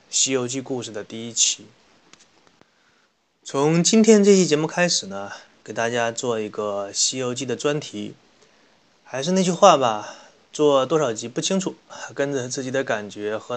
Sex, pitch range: male, 115-155 Hz